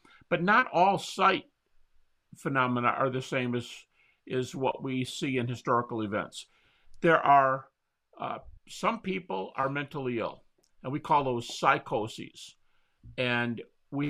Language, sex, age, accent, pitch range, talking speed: English, male, 50-69, American, 120-185 Hz, 130 wpm